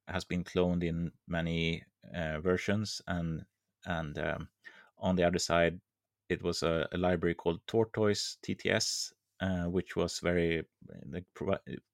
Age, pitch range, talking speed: 30-49, 85-95 Hz, 140 wpm